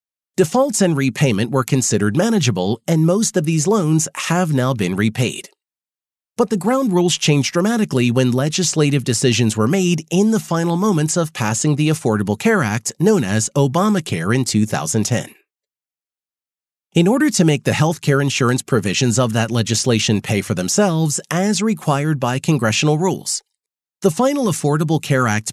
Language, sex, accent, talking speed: English, male, American, 155 wpm